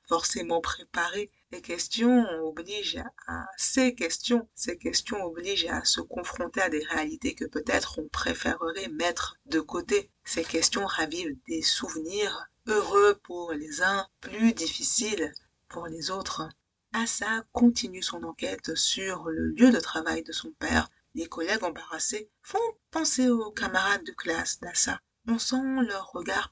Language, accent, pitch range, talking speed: French, French, 180-255 Hz, 145 wpm